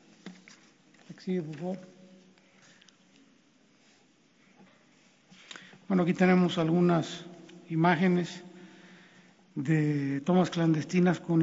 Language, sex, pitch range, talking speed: Spanish, male, 170-190 Hz, 65 wpm